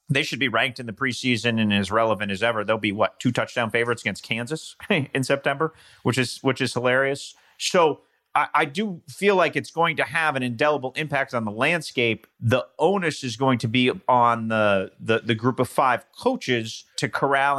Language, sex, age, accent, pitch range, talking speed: English, male, 30-49, American, 120-160 Hz, 205 wpm